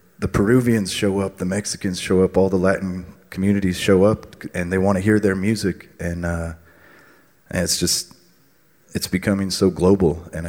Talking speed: 175 wpm